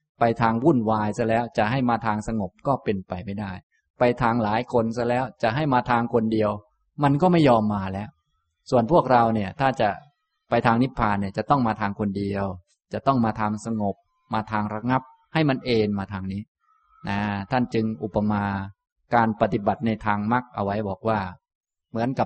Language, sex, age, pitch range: Thai, male, 20-39, 105-130 Hz